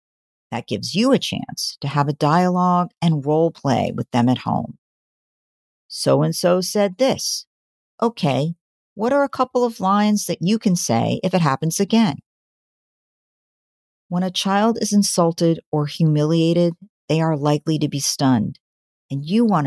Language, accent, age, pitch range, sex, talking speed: English, American, 50-69, 150-195 Hz, female, 155 wpm